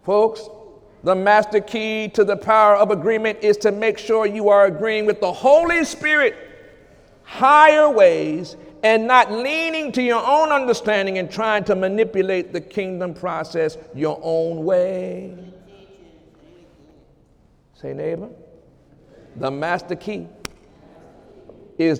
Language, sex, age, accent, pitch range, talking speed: English, male, 50-69, American, 180-250 Hz, 125 wpm